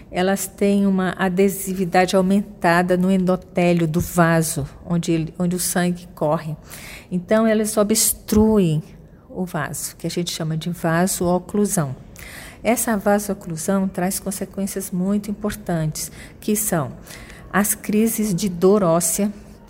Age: 40-59